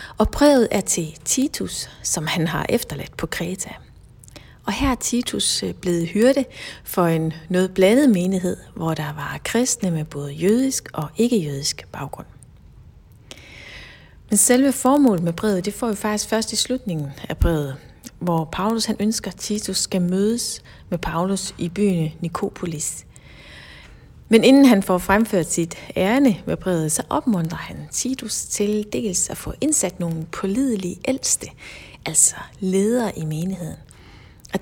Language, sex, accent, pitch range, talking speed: Danish, female, native, 165-225 Hz, 145 wpm